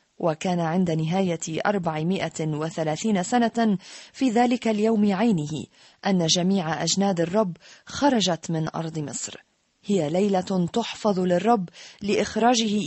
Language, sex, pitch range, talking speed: Arabic, female, 165-215 Hz, 105 wpm